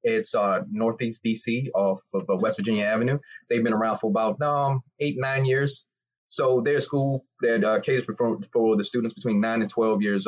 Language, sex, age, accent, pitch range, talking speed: English, male, 20-39, American, 105-130 Hz, 195 wpm